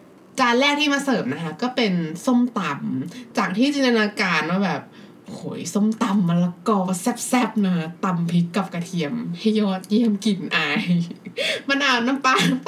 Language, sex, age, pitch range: Thai, female, 20-39, 190-250 Hz